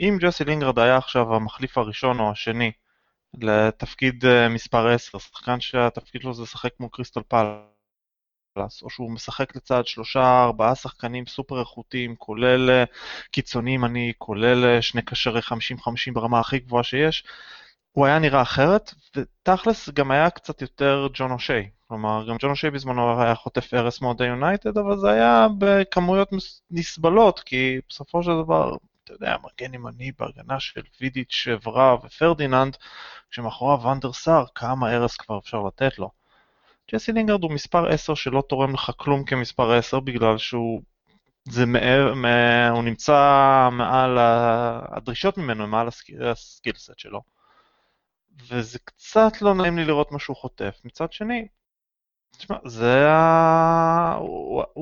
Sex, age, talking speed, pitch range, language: male, 20-39, 135 wpm, 120-150 Hz, Hebrew